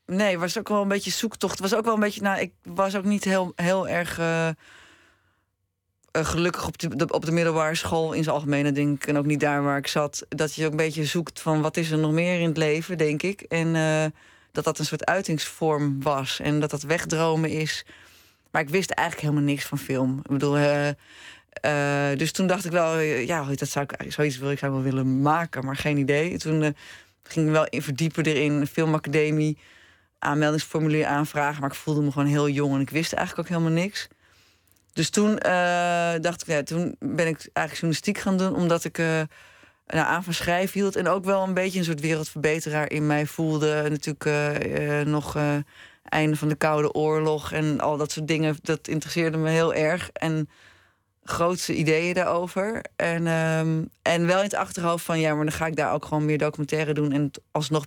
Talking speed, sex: 210 wpm, female